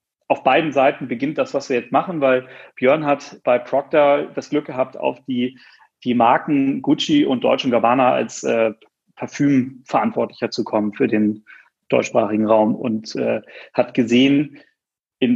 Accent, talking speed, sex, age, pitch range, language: German, 155 wpm, male, 40-59, 120-145 Hz, German